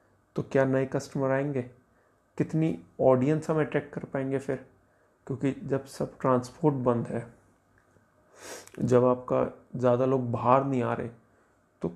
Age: 30-49